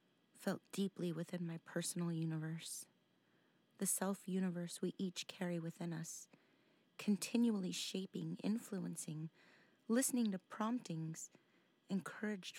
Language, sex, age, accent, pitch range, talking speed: English, female, 30-49, American, 170-200 Hz, 95 wpm